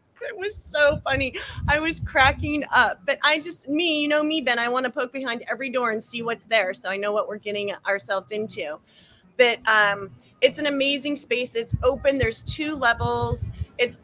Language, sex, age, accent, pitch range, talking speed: English, female, 30-49, American, 205-260 Hz, 200 wpm